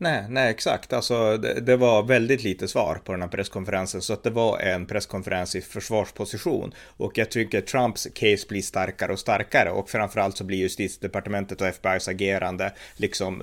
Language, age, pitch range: Swedish, 30-49, 95-110 Hz